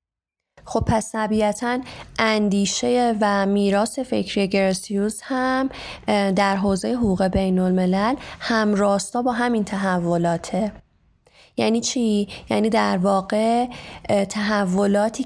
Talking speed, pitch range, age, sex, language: 100 wpm, 190-240 Hz, 20-39, female, Persian